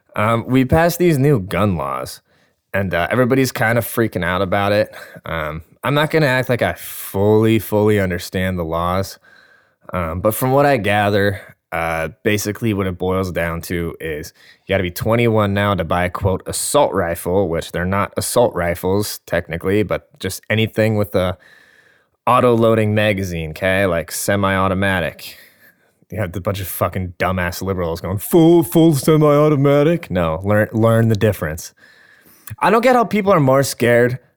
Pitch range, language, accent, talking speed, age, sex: 95-120 Hz, English, American, 170 wpm, 20-39, male